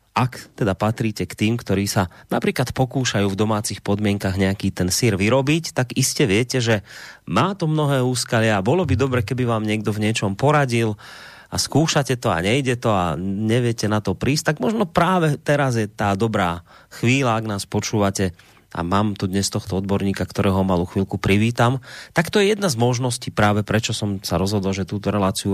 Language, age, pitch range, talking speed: Slovak, 30-49, 100-135 Hz, 190 wpm